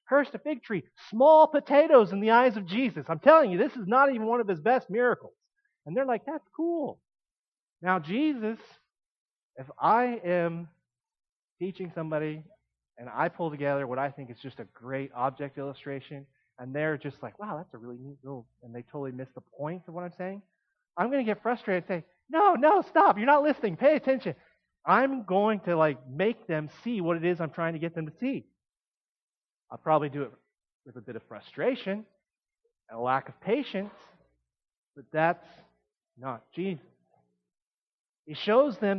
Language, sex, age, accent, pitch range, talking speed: English, male, 30-49, American, 155-245 Hz, 185 wpm